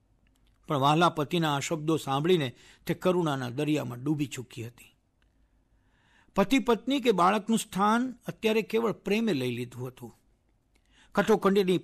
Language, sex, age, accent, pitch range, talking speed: Gujarati, male, 60-79, native, 125-200 Hz, 115 wpm